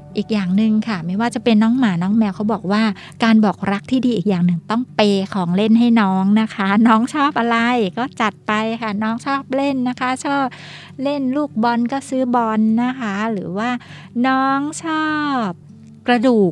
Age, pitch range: 60-79, 195-250 Hz